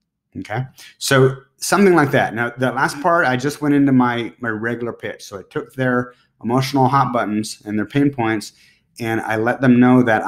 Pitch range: 105-130 Hz